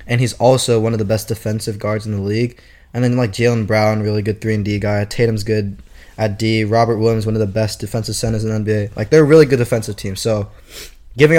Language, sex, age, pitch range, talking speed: English, male, 10-29, 105-125 Hz, 250 wpm